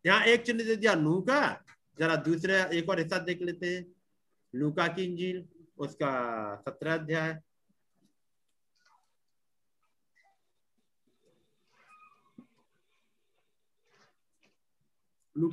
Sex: male